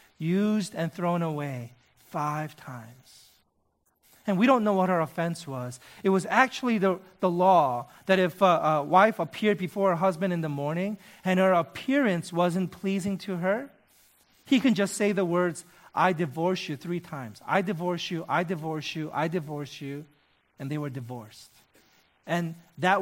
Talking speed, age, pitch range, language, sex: 170 wpm, 40-59, 145-190 Hz, English, male